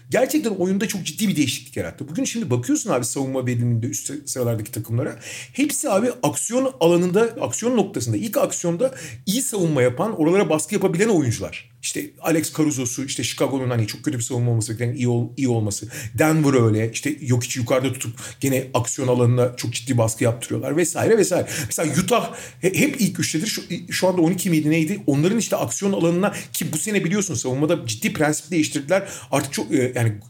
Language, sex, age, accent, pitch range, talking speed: Turkish, male, 40-59, native, 125-185 Hz, 175 wpm